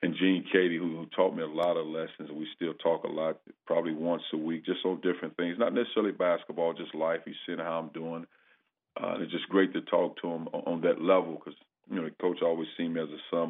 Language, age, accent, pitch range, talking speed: English, 40-59, American, 80-90 Hz, 260 wpm